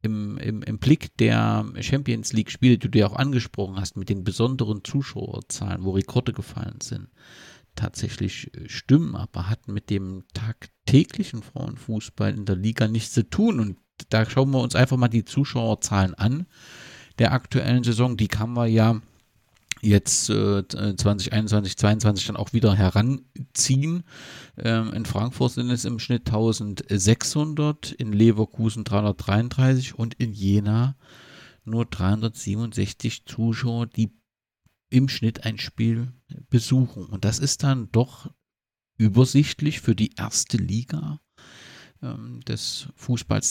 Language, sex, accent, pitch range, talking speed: German, male, German, 105-130 Hz, 130 wpm